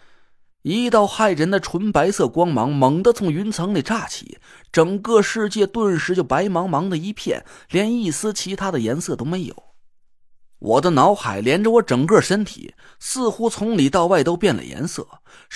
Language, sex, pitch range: Chinese, male, 165-215 Hz